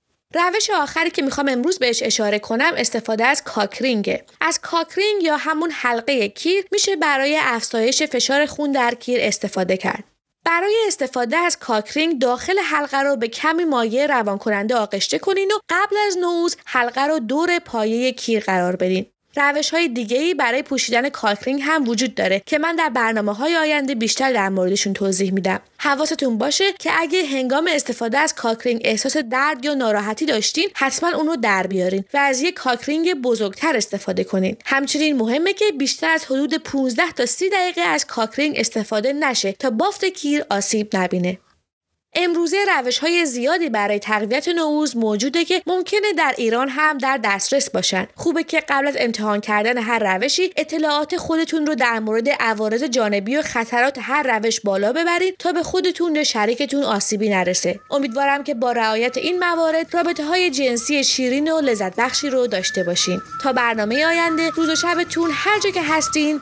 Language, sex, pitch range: English, female, 230-325 Hz